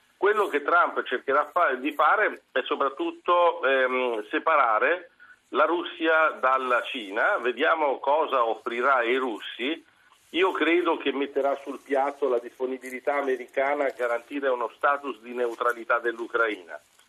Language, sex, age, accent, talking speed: Italian, male, 50-69, native, 120 wpm